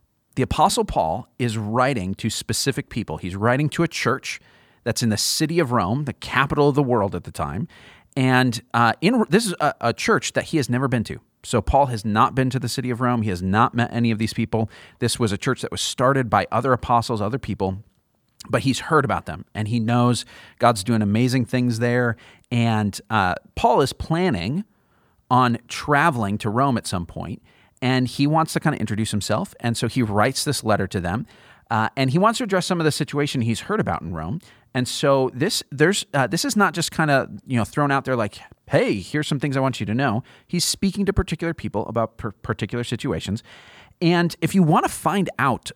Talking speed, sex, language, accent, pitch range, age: 220 wpm, male, English, American, 110-140 Hz, 40-59